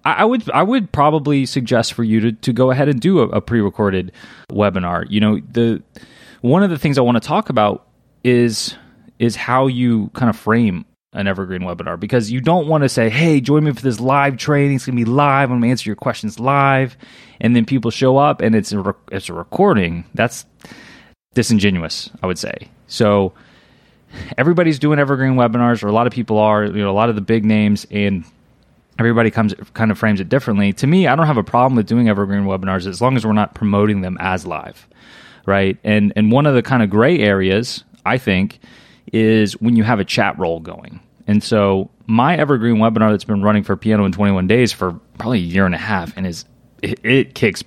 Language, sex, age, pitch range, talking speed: English, male, 20-39, 100-125 Hz, 215 wpm